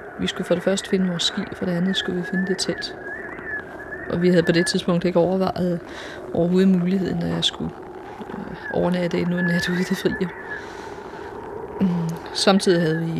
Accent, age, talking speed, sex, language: native, 30-49, 190 wpm, female, Danish